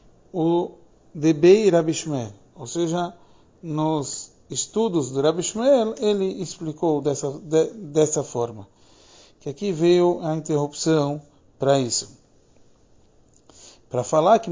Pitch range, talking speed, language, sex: 135-170 Hz, 105 wpm, Portuguese, male